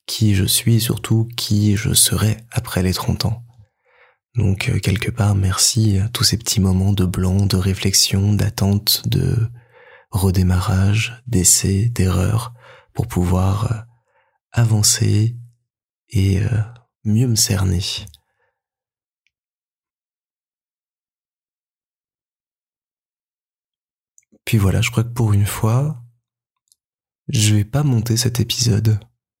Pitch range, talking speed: 100-120 Hz, 105 wpm